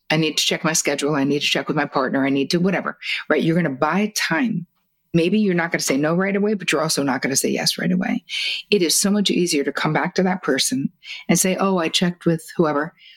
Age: 50-69